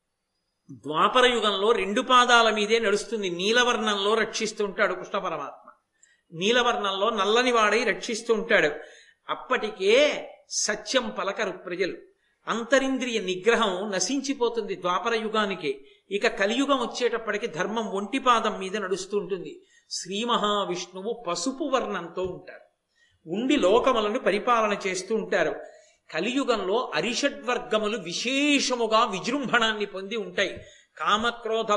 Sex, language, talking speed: male, Telugu, 95 wpm